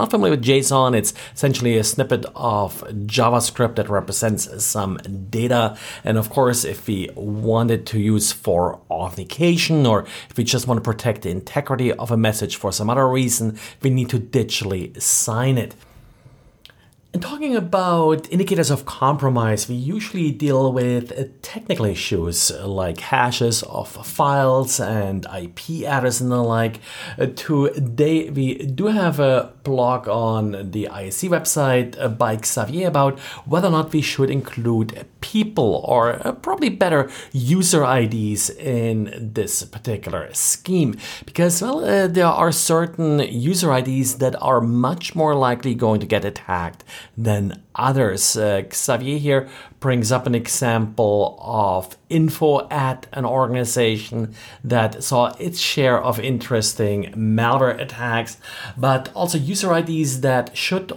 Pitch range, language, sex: 110-145 Hz, English, male